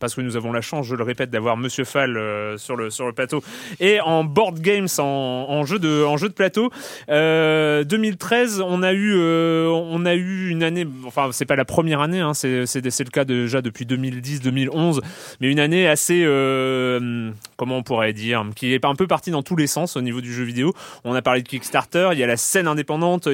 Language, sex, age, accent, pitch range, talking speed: French, male, 30-49, French, 125-165 Hz, 230 wpm